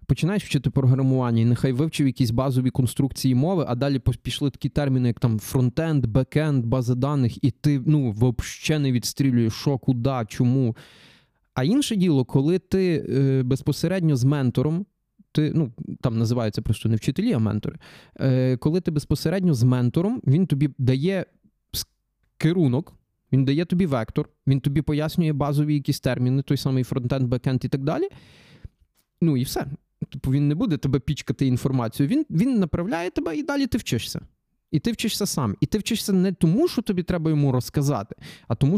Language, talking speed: Ukrainian, 170 wpm